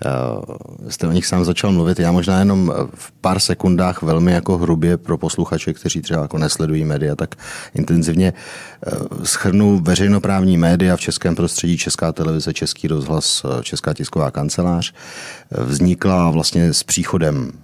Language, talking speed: Czech, 140 wpm